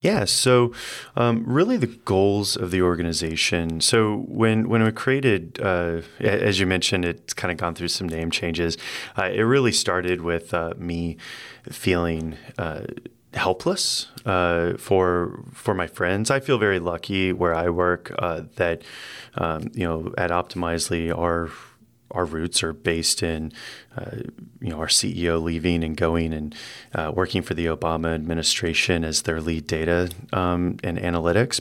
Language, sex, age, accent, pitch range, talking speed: English, male, 30-49, American, 85-110 Hz, 160 wpm